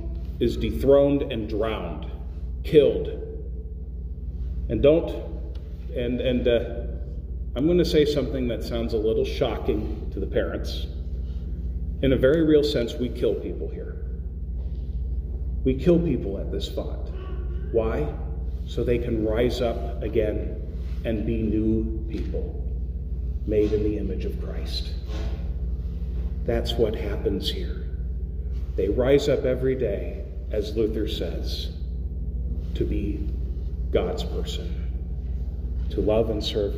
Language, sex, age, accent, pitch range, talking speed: English, male, 40-59, American, 75-105 Hz, 120 wpm